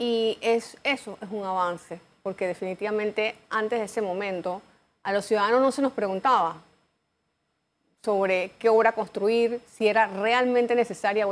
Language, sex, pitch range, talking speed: Spanish, female, 190-230 Hz, 150 wpm